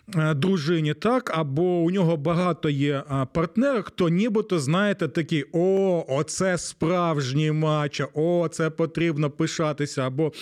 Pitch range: 145-185 Hz